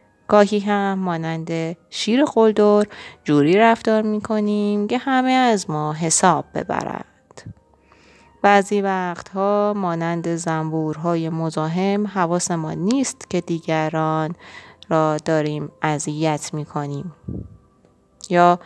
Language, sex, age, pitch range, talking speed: Persian, female, 30-49, 155-200 Hz, 105 wpm